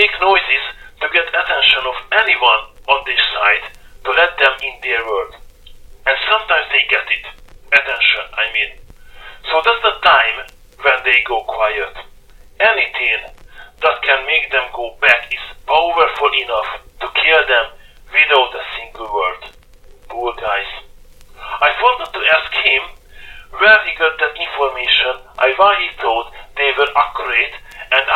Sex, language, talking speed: male, English, 145 wpm